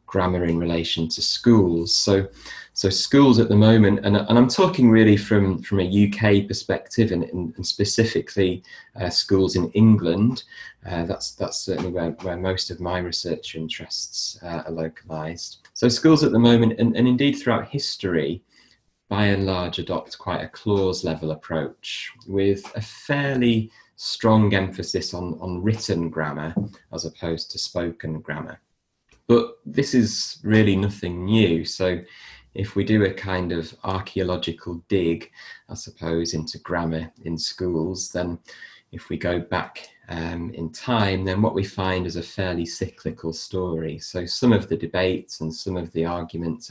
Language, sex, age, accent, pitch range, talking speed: English, male, 30-49, British, 85-105 Hz, 160 wpm